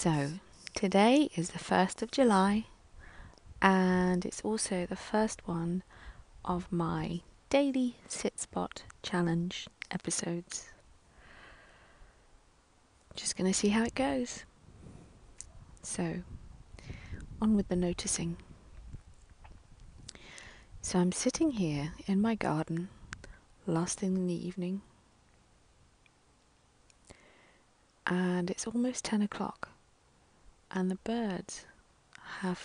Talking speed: 95 wpm